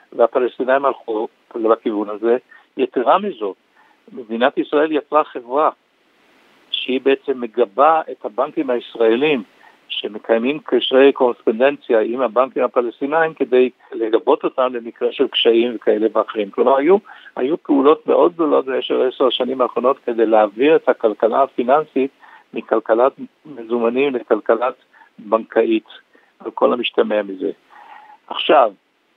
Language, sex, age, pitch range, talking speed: Hebrew, male, 60-79, 115-165 Hz, 110 wpm